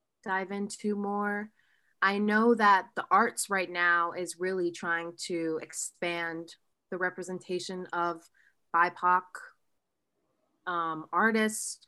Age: 20-39